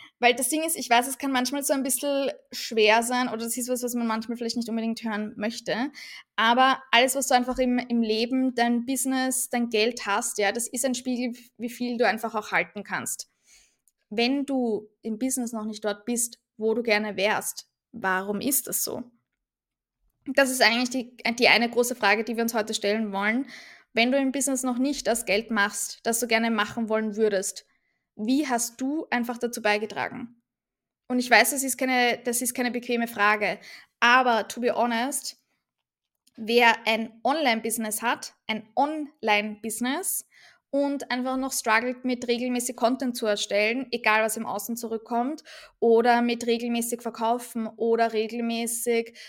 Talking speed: 175 wpm